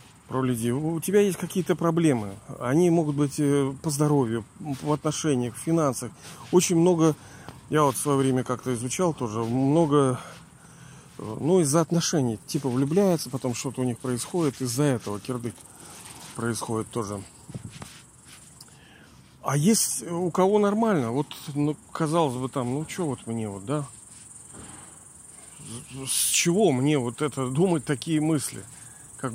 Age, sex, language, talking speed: 40-59, male, Russian, 135 wpm